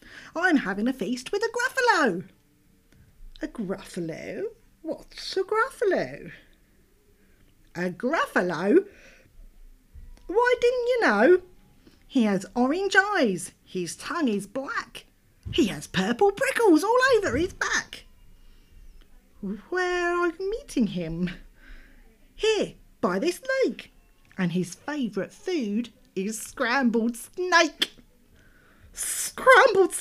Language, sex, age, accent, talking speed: English, female, 40-59, British, 100 wpm